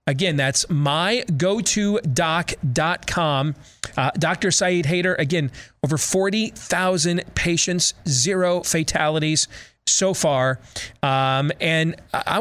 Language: English